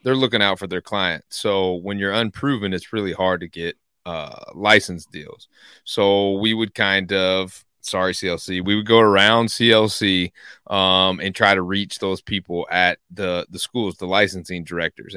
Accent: American